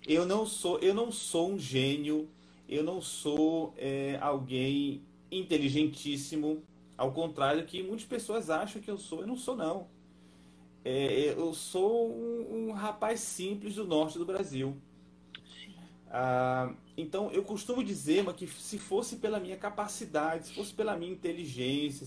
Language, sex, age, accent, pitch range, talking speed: Portuguese, male, 30-49, Brazilian, 130-190 Hz, 150 wpm